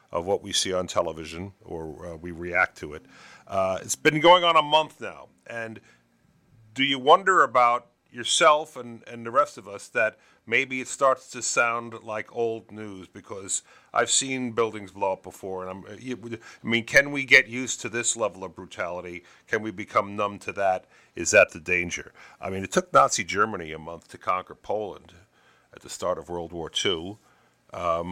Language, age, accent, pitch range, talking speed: English, 50-69, American, 90-125 Hz, 190 wpm